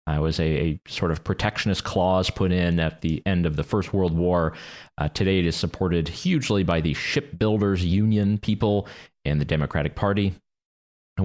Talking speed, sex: 185 wpm, male